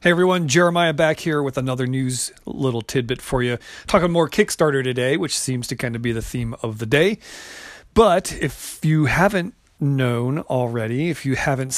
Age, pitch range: 40-59, 130-170 Hz